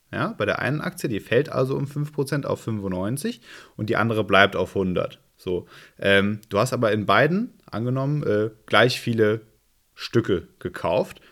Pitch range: 95-120 Hz